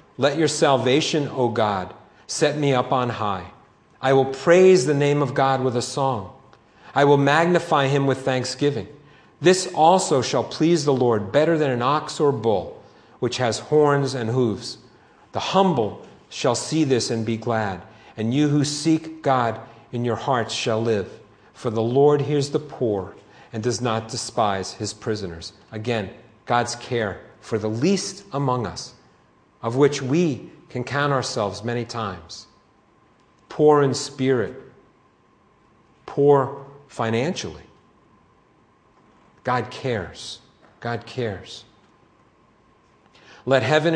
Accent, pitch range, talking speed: American, 115-145 Hz, 135 wpm